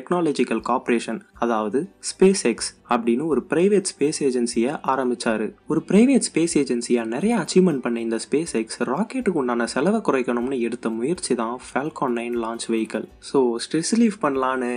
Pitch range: 120-180 Hz